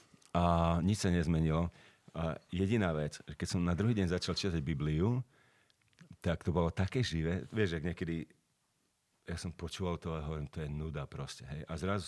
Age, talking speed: 40-59, 180 wpm